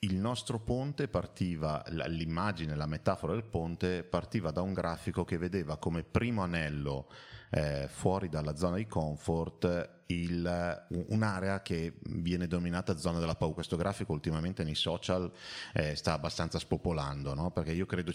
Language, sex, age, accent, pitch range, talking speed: Italian, male, 30-49, native, 80-105 Hz, 150 wpm